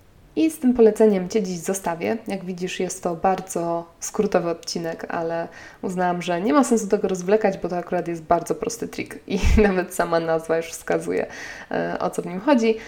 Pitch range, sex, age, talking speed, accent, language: 175-215 Hz, female, 20-39, 185 wpm, native, Polish